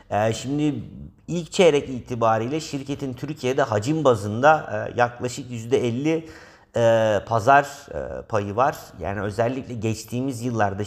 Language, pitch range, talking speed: Turkish, 110-140 Hz, 95 wpm